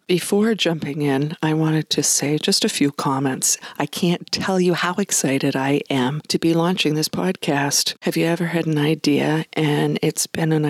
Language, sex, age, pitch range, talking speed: English, female, 50-69, 140-180 Hz, 190 wpm